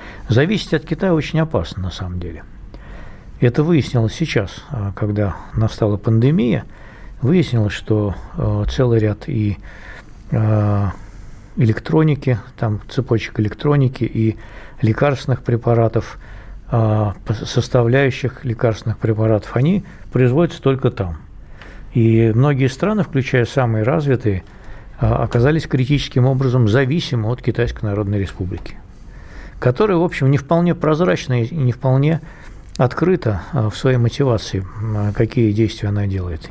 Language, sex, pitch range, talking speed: Russian, male, 105-130 Hz, 105 wpm